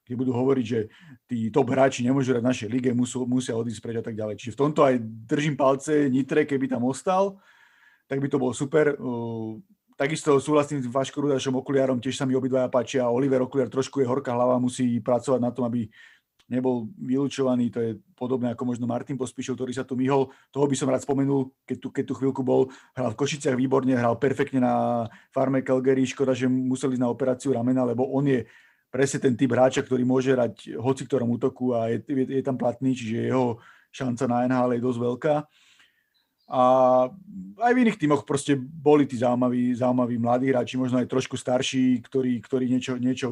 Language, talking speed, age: Slovak, 195 wpm, 40-59